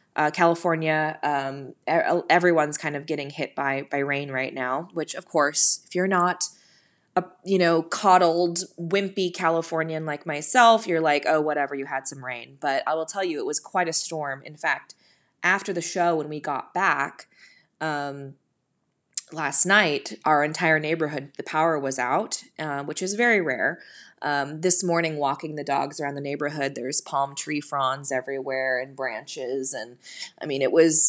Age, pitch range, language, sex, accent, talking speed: 20-39, 145-190 Hz, English, female, American, 170 wpm